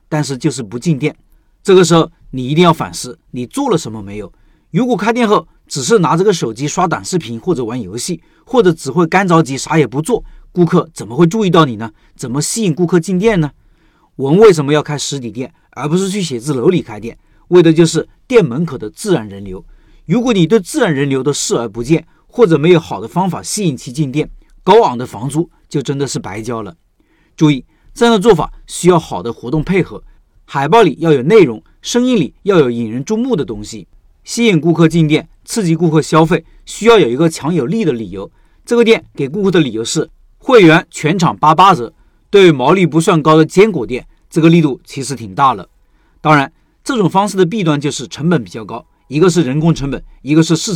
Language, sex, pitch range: Chinese, male, 140-185 Hz